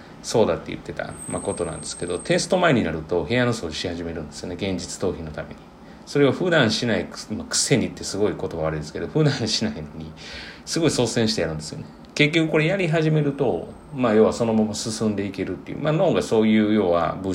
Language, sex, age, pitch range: Japanese, male, 40-59, 80-120 Hz